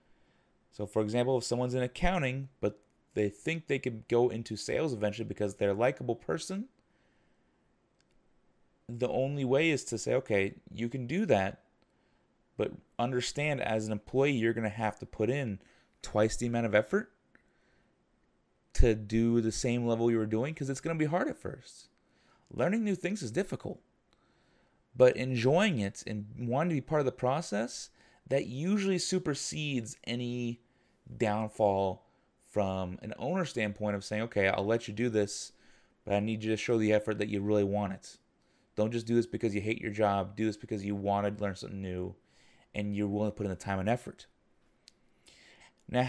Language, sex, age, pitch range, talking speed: English, male, 30-49, 105-140 Hz, 180 wpm